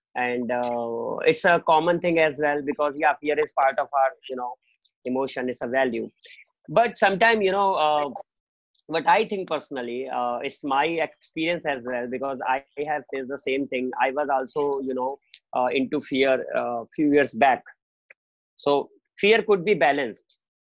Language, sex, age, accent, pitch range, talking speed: English, male, 30-49, Indian, 135-165 Hz, 175 wpm